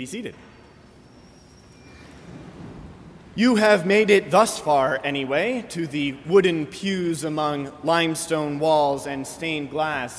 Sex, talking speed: male, 105 wpm